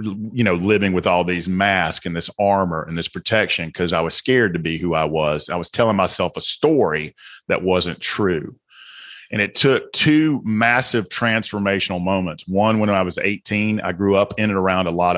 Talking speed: 200 wpm